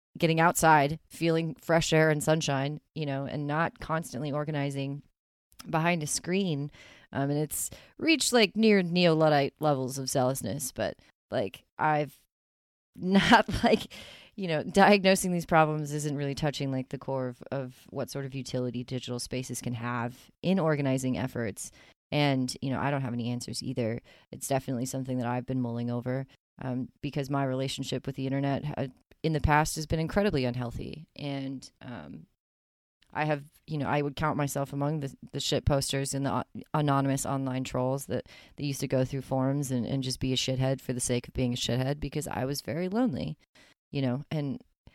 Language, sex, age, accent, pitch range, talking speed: English, female, 30-49, American, 130-160 Hz, 180 wpm